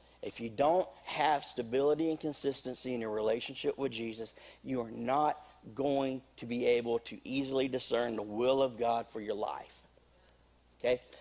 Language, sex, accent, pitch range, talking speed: English, male, American, 105-140 Hz, 160 wpm